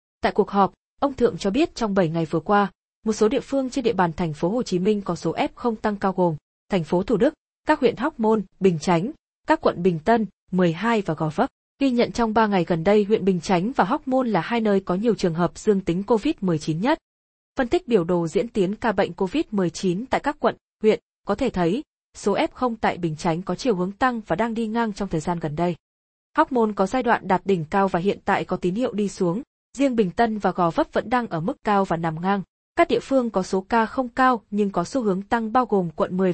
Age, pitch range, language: 20-39, 180-240 Hz, Vietnamese